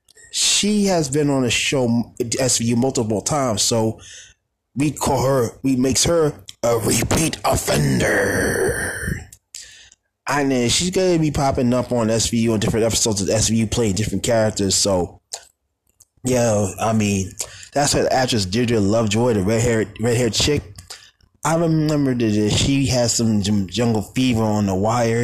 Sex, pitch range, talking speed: male, 100-130 Hz, 150 wpm